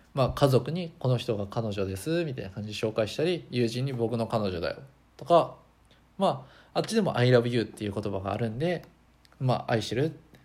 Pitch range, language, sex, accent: 110-155 Hz, Japanese, male, native